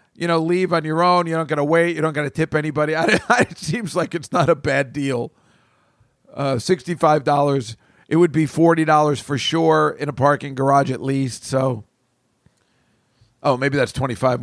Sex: male